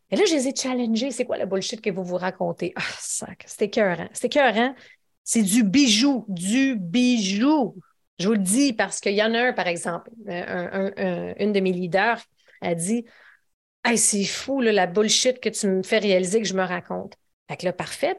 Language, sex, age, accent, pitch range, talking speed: French, female, 30-49, Canadian, 185-235 Hz, 225 wpm